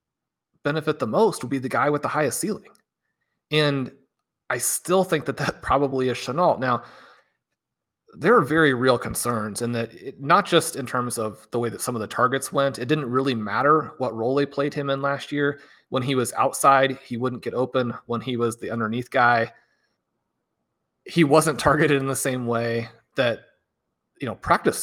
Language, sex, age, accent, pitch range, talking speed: English, male, 30-49, American, 115-145 Hz, 190 wpm